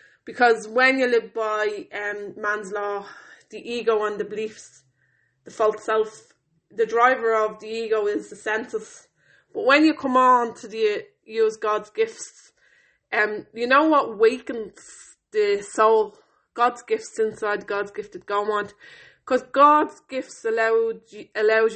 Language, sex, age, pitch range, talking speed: English, female, 20-39, 210-275 Hz, 145 wpm